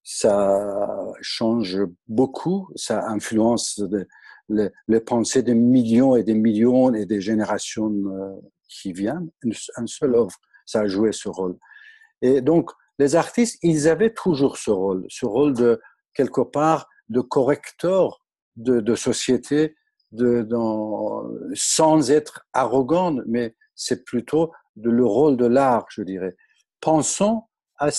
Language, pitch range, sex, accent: French, 110-155 Hz, male, French